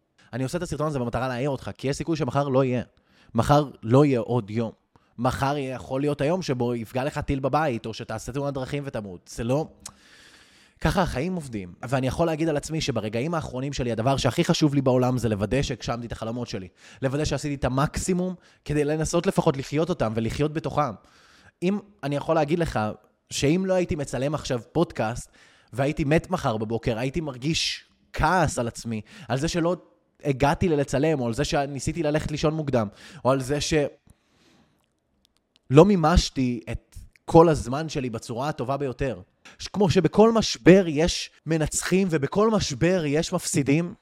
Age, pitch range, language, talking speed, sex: 20-39, 125-160 Hz, Hebrew, 150 wpm, male